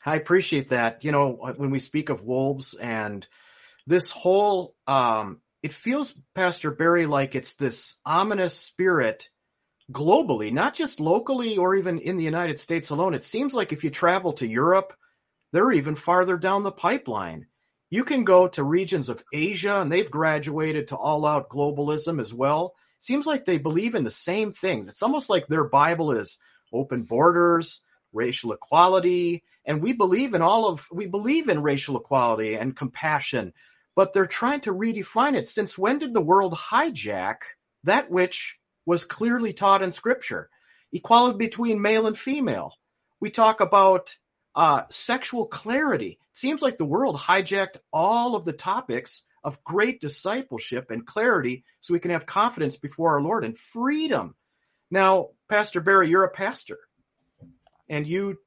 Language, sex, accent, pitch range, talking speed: English, male, American, 150-210 Hz, 160 wpm